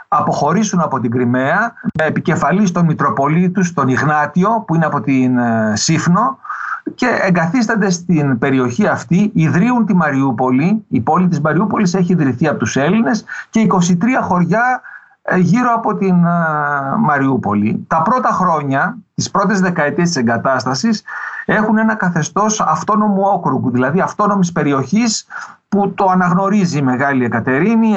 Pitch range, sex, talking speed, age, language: 150-210 Hz, male, 130 wpm, 50-69, Greek